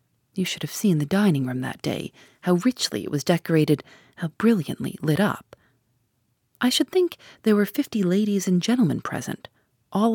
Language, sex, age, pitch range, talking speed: English, female, 40-59, 150-210 Hz, 165 wpm